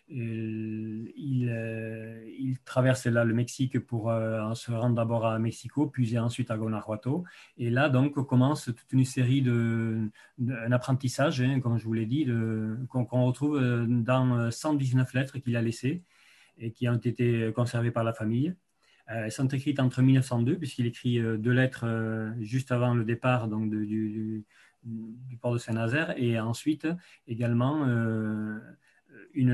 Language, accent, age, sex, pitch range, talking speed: French, French, 40-59, male, 115-130 Hz, 165 wpm